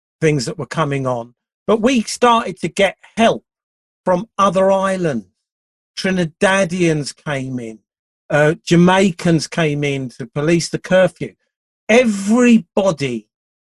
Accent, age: British, 40-59